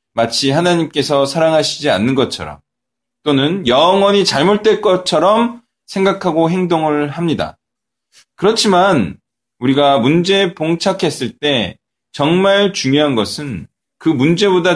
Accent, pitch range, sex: native, 135-195 Hz, male